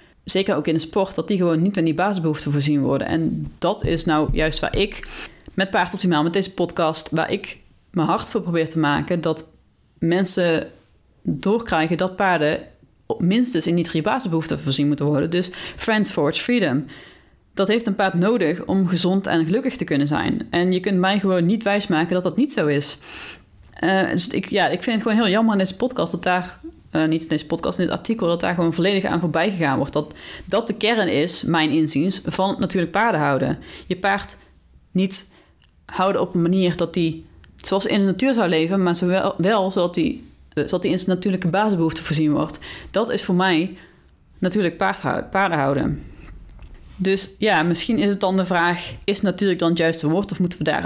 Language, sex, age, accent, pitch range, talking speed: Dutch, female, 30-49, Dutch, 160-195 Hz, 205 wpm